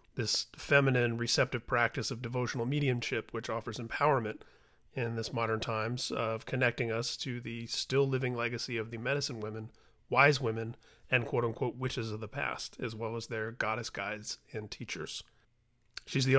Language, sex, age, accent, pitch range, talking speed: English, male, 30-49, American, 120-145 Hz, 155 wpm